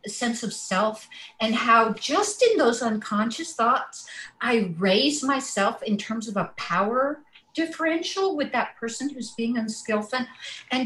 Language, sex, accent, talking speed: English, female, American, 145 wpm